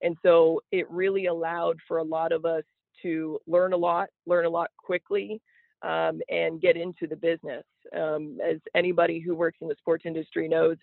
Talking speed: 190 wpm